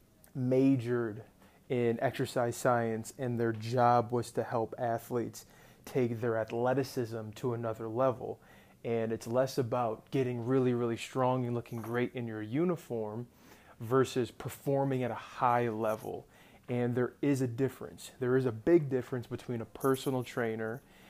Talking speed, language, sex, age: 145 wpm, English, male, 20-39